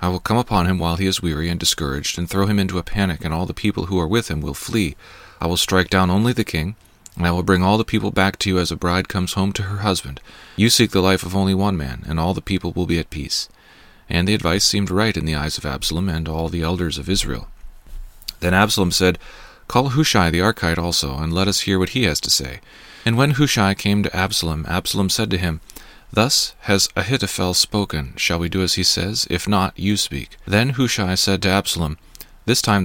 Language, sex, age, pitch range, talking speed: English, male, 40-59, 85-100 Hz, 240 wpm